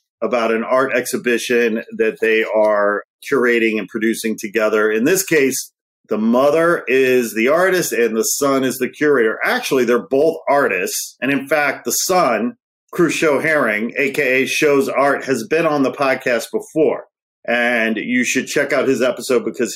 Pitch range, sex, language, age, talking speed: 110-130 Hz, male, English, 40-59, 160 wpm